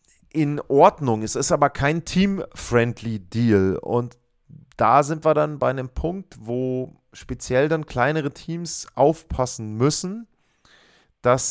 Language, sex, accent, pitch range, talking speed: German, male, German, 120-150 Hz, 120 wpm